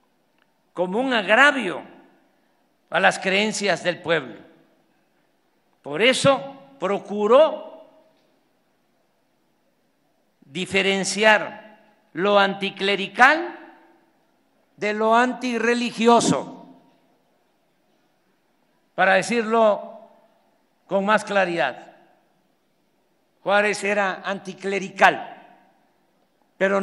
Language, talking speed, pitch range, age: Spanish, 60 wpm, 195-245 Hz, 50-69